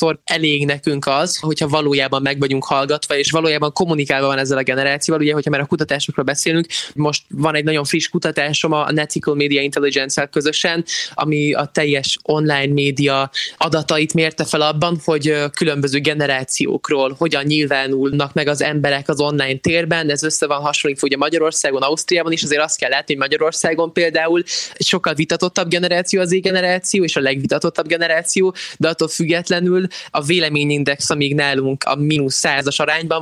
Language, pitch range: Hungarian, 140-165 Hz